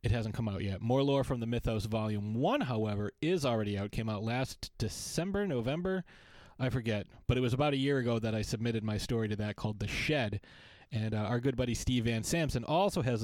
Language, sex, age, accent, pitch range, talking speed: English, male, 30-49, American, 105-125 Hz, 225 wpm